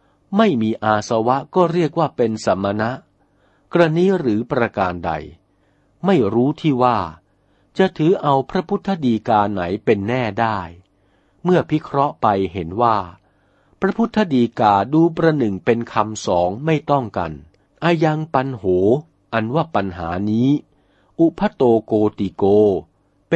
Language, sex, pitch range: Thai, male, 100-155 Hz